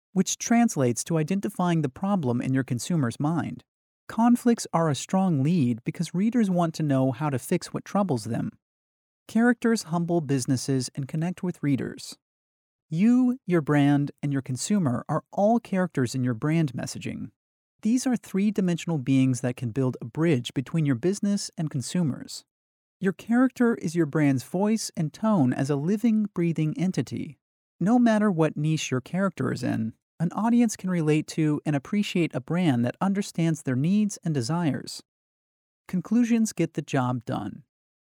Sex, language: male, English